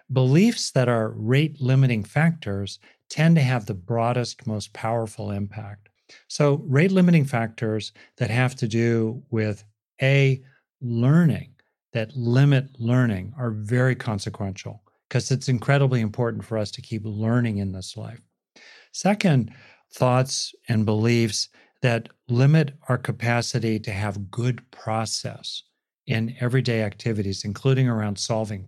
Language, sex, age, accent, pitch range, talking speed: English, male, 40-59, American, 110-130 Hz, 125 wpm